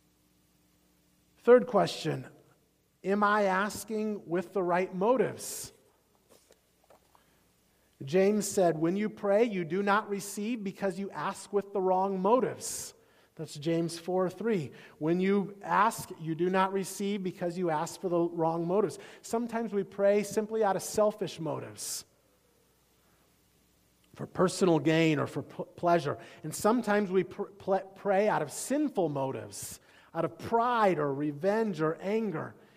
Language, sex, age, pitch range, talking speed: English, male, 40-59, 165-215 Hz, 130 wpm